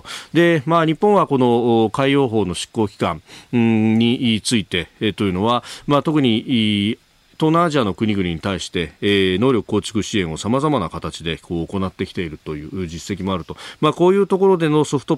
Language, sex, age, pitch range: Japanese, male, 40-59, 95-135 Hz